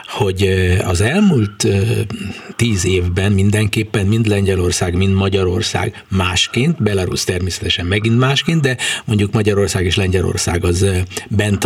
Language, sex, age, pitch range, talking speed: Hungarian, male, 50-69, 100-145 Hz, 115 wpm